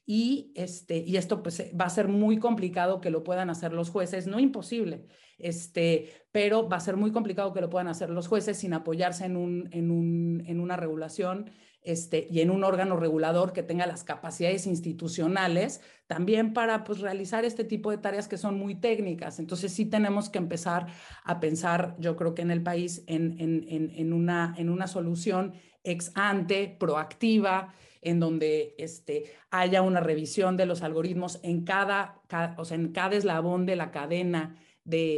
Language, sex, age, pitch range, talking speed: Spanish, female, 40-59, 170-200 Hz, 175 wpm